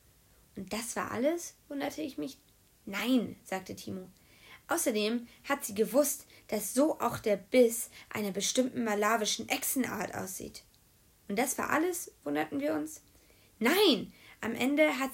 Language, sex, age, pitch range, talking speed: German, female, 20-39, 215-290 Hz, 140 wpm